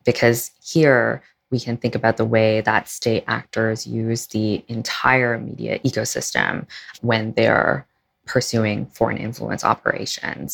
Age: 20-39